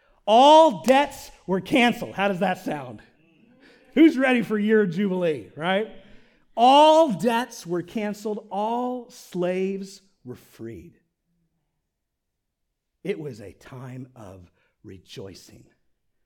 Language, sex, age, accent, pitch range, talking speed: English, male, 40-59, American, 150-215 Hz, 105 wpm